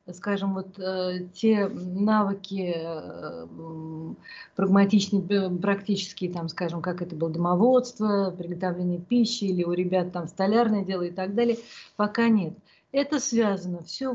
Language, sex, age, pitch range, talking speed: Russian, female, 50-69, 180-225 Hz, 125 wpm